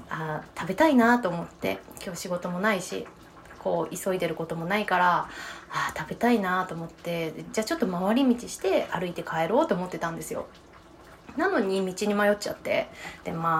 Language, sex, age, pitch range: Japanese, female, 20-39, 175-240 Hz